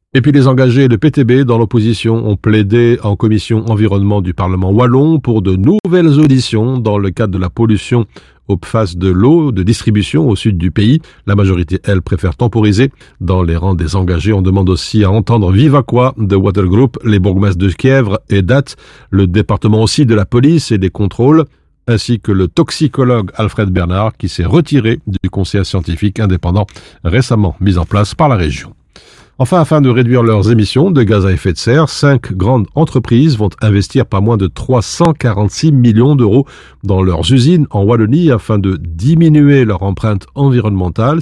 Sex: male